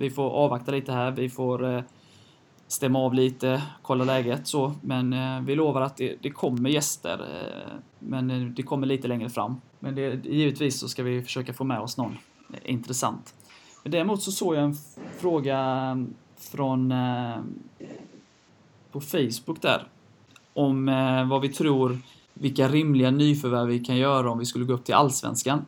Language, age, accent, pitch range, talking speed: Swedish, 20-39, native, 120-140 Hz, 155 wpm